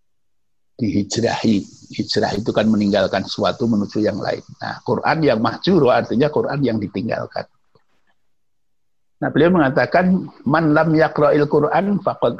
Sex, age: male, 60-79